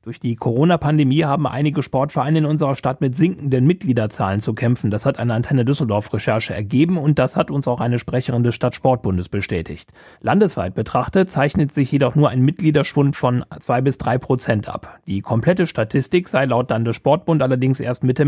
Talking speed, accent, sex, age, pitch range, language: 170 wpm, German, male, 30-49, 120-150 Hz, German